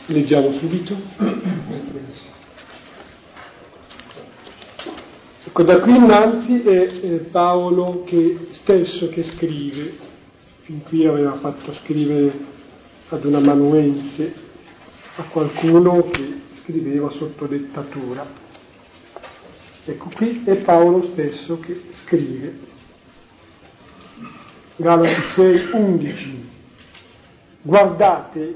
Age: 40-59